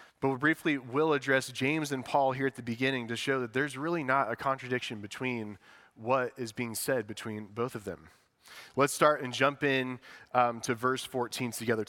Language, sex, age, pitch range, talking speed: English, male, 20-39, 125-155 Hz, 195 wpm